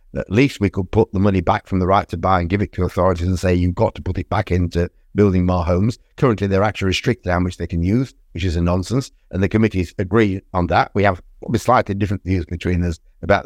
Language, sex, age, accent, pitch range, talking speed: English, male, 50-69, British, 90-110 Hz, 255 wpm